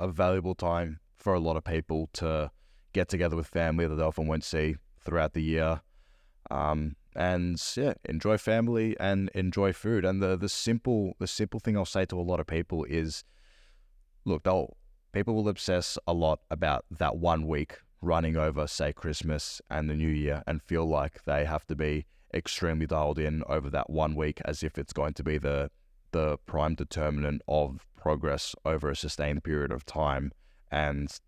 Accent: Australian